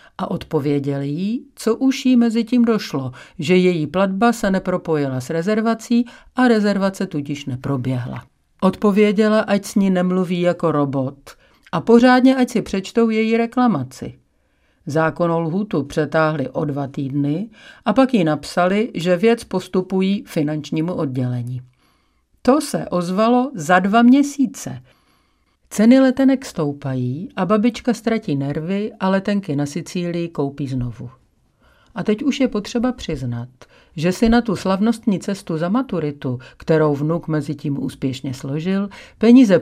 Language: Czech